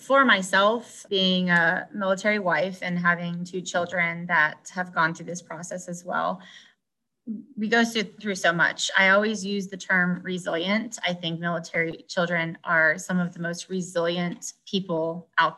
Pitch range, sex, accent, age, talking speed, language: 175-210 Hz, female, American, 20-39, 160 wpm, English